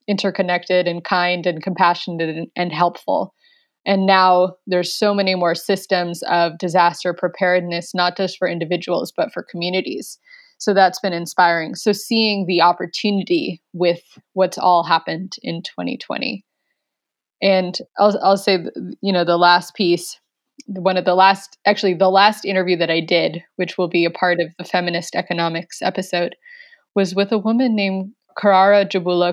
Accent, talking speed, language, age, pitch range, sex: American, 155 wpm, English, 20-39, 175-200 Hz, female